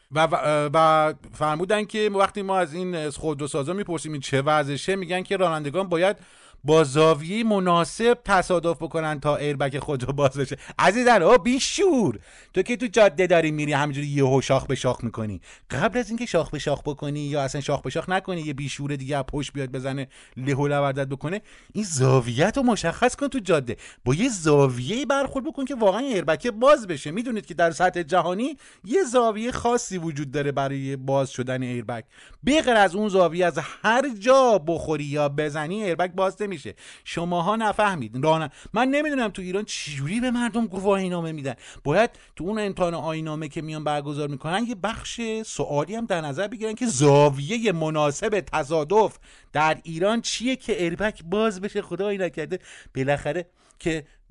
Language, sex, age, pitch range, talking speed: Persian, male, 30-49, 145-210 Hz, 170 wpm